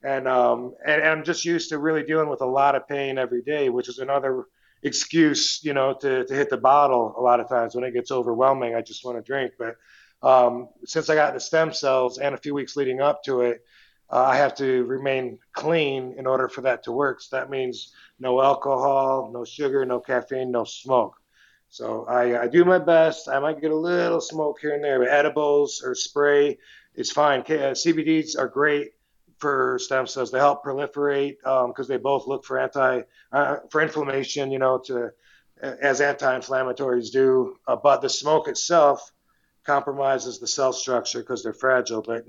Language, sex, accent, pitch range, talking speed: English, male, American, 125-150 Hz, 200 wpm